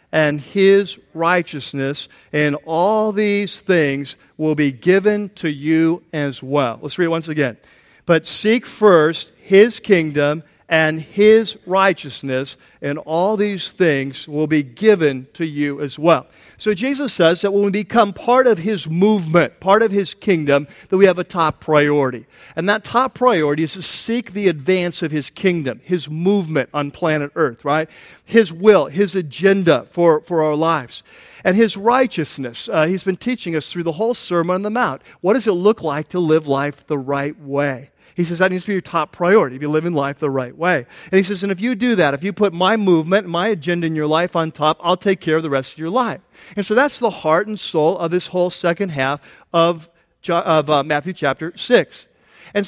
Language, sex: English, male